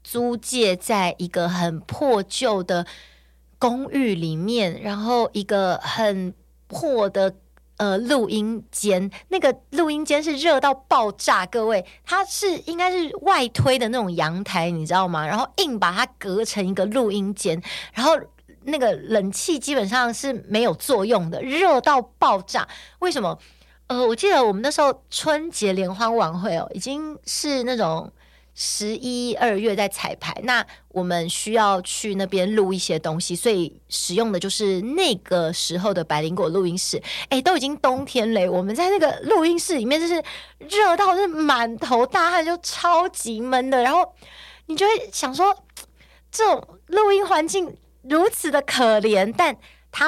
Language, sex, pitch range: Chinese, female, 180-280 Hz